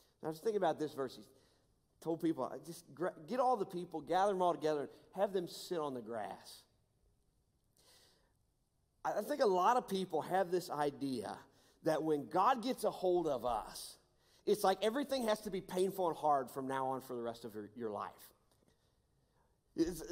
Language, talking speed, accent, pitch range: English, 180 wpm, American, 160-210 Hz